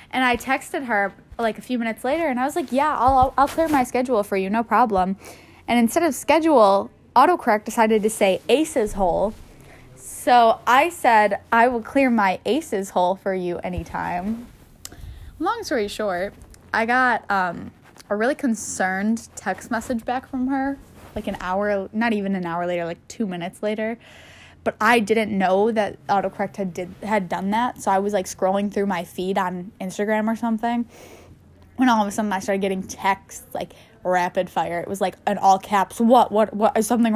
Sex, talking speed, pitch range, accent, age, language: female, 185 wpm, 195-240 Hz, American, 10-29, English